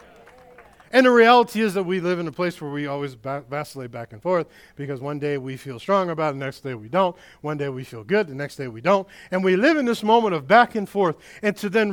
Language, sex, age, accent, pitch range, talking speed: English, male, 50-69, American, 135-225 Hz, 265 wpm